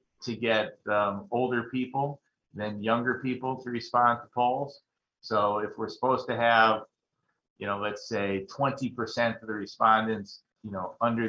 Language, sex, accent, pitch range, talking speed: English, male, American, 100-120 Hz, 155 wpm